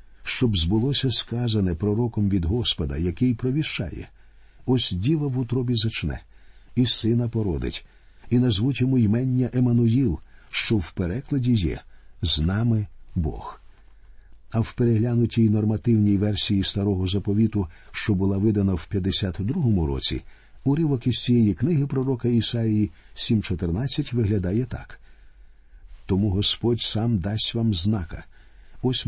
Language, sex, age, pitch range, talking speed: Ukrainian, male, 50-69, 95-125 Hz, 120 wpm